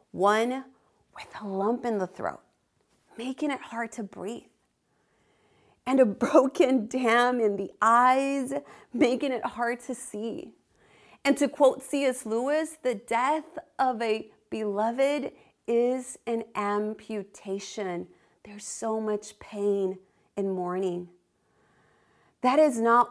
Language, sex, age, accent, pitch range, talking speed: English, female, 30-49, American, 200-260 Hz, 120 wpm